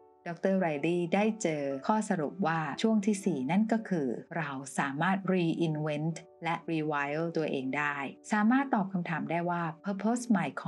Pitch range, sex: 155-200 Hz, female